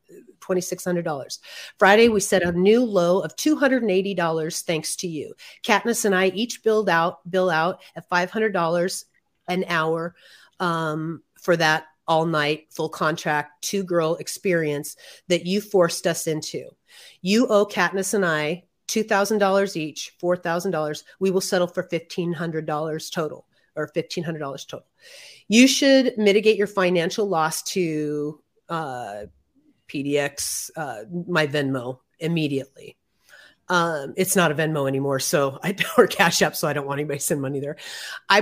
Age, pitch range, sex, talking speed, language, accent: 30-49, 160-190 Hz, female, 140 wpm, English, American